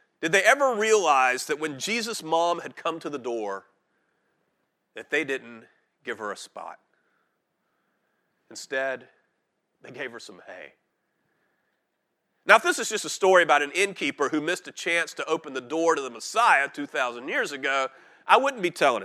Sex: male